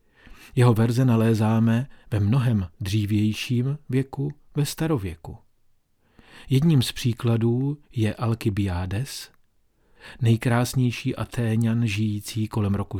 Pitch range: 105-125 Hz